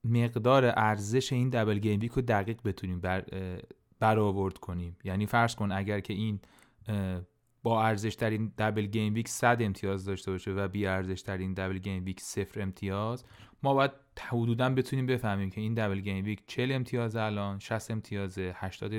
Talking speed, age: 165 wpm, 30-49